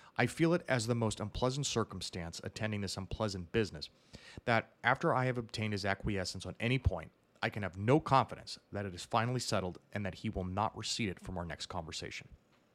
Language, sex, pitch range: English, male, 95-125 Hz